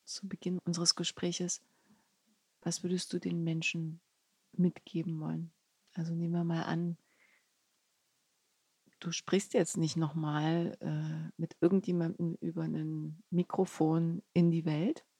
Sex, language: female, German